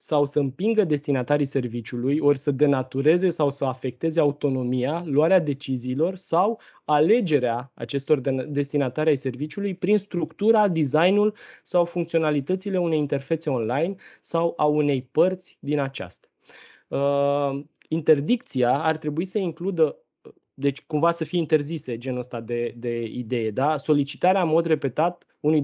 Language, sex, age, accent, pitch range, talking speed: Romanian, male, 20-39, native, 140-175 Hz, 125 wpm